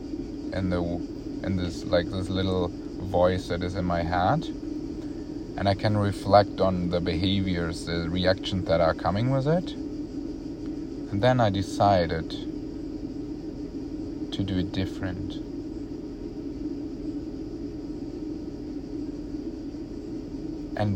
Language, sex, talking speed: English, male, 105 wpm